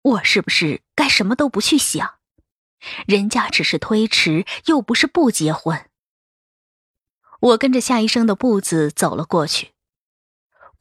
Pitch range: 190-265 Hz